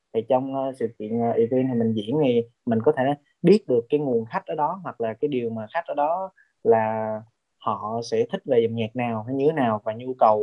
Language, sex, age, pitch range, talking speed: Vietnamese, male, 20-39, 115-145 Hz, 245 wpm